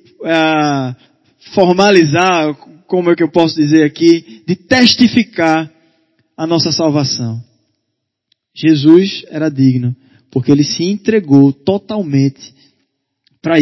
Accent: Brazilian